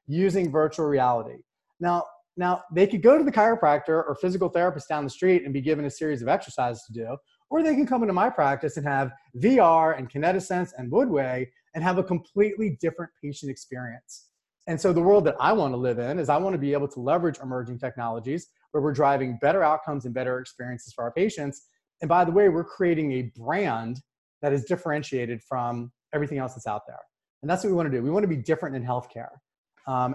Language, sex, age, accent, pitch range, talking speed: English, male, 30-49, American, 130-180 Hz, 220 wpm